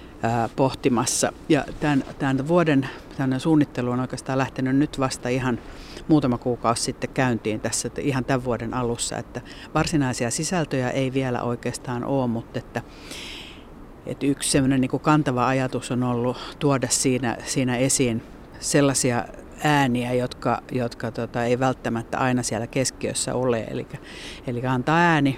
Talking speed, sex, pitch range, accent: 135 wpm, female, 120-140 Hz, native